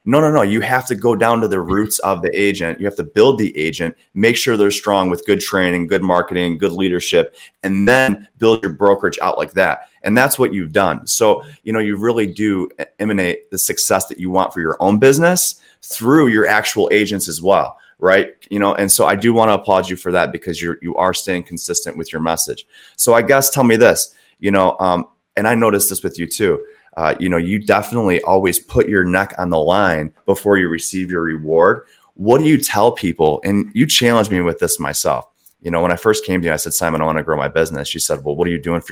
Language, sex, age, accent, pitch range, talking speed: English, male, 30-49, American, 85-105 Hz, 240 wpm